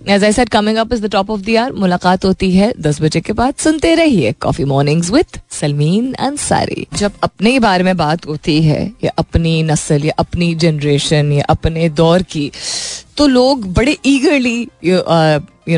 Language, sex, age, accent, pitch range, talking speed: Hindi, female, 20-39, native, 155-210 Hz, 160 wpm